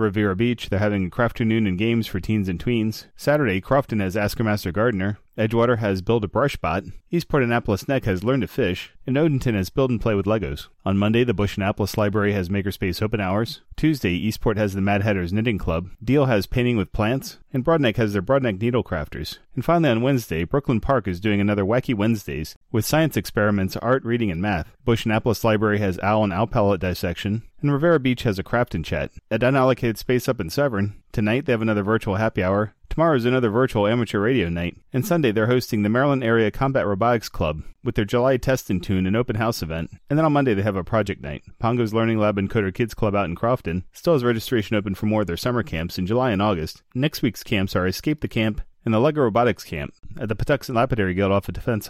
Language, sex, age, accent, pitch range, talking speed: English, male, 30-49, American, 100-125 Hz, 225 wpm